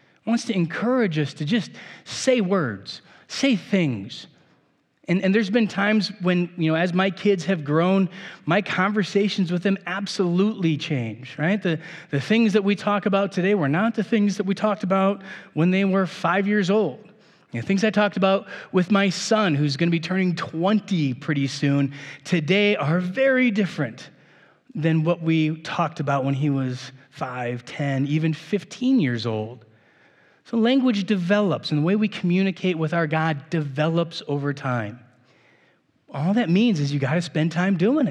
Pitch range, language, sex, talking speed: 140-195 Hz, English, male, 170 wpm